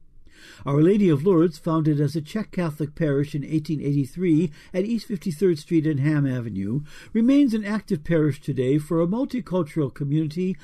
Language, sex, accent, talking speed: English, male, American, 160 wpm